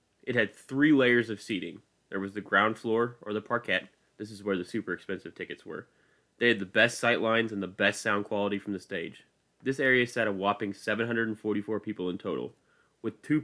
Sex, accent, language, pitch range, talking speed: male, American, English, 100-120 Hz, 210 wpm